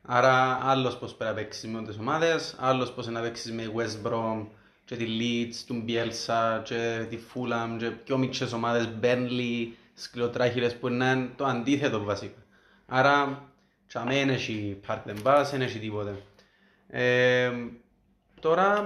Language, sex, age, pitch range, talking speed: Greek, male, 30-49, 110-135 Hz, 135 wpm